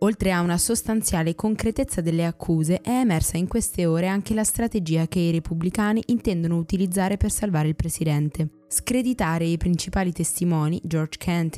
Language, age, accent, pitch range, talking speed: Italian, 20-39, native, 165-195 Hz, 155 wpm